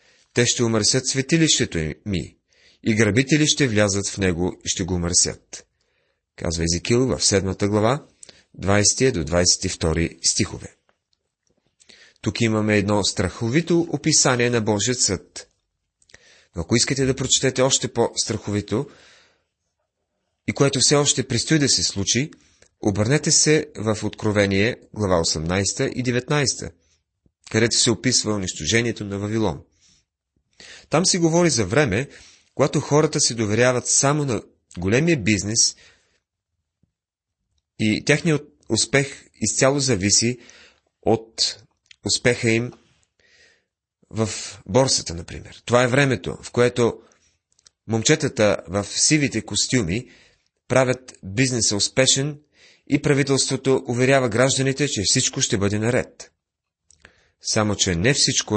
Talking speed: 110 wpm